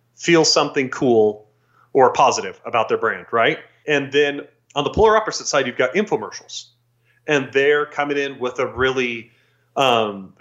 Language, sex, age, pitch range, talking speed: English, male, 30-49, 120-150 Hz, 155 wpm